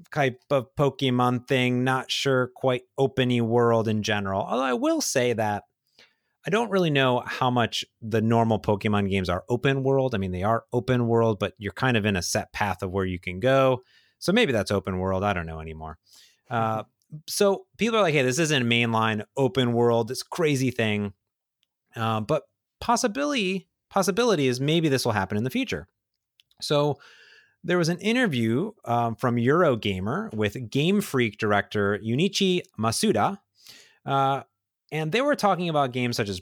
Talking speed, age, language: 175 wpm, 30-49, English